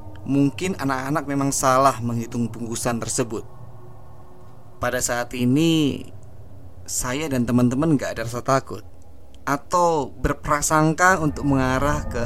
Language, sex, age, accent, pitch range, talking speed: Indonesian, male, 20-39, native, 105-140 Hz, 110 wpm